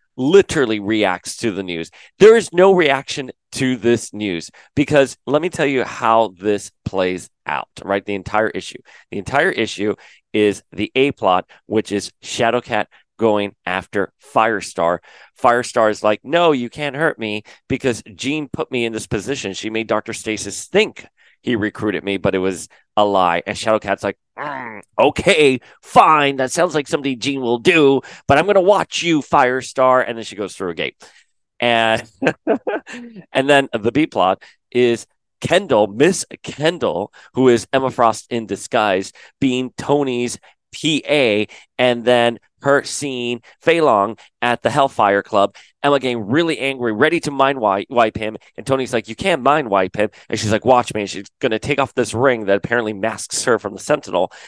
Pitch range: 105-135 Hz